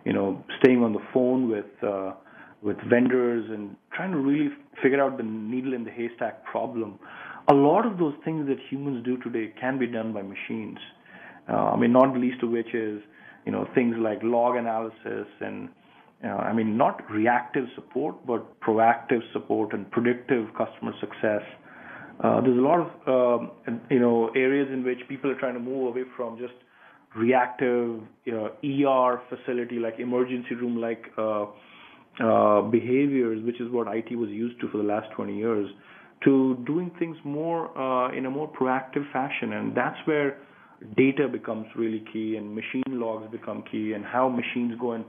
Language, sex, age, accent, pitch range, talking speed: English, male, 30-49, Indian, 115-130 Hz, 180 wpm